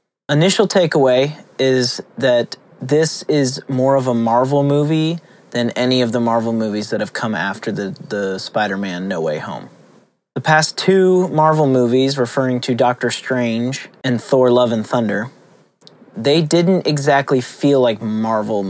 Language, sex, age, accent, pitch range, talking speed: English, male, 30-49, American, 115-140 Hz, 150 wpm